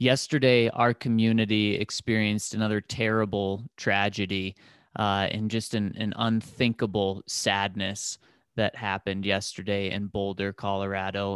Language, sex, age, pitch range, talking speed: English, male, 20-39, 100-120 Hz, 105 wpm